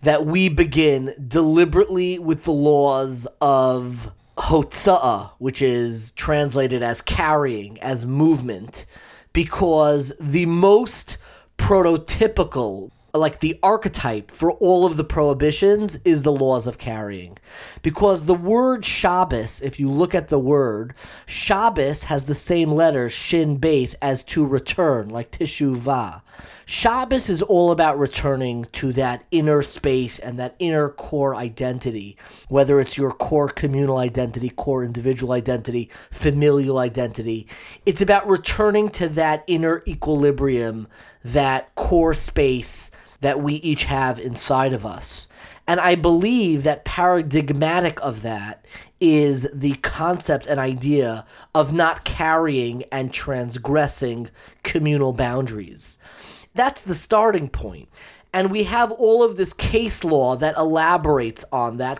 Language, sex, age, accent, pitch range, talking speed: English, male, 30-49, American, 130-170 Hz, 130 wpm